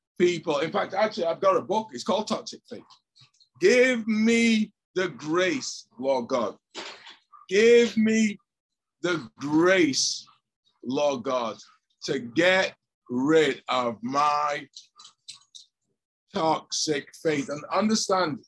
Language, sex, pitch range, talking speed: English, male, 150-210 Hz, 105 wpm